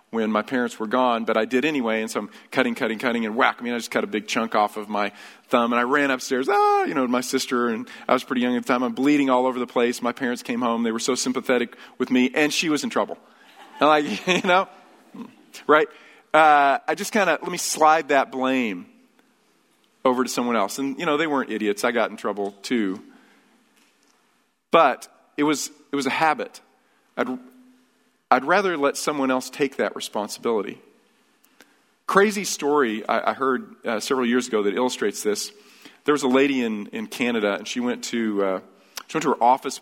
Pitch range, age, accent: 115-155 Hz, 40-59, American